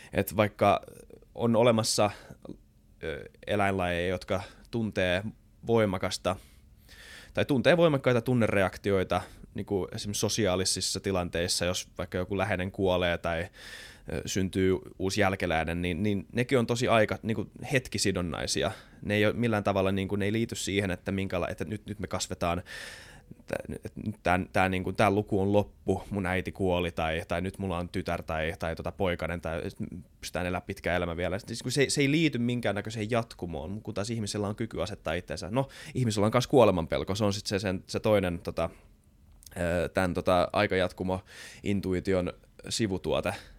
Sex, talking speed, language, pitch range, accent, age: male, 140 wpm, Finnish, 90-110 Hz, native, 20-39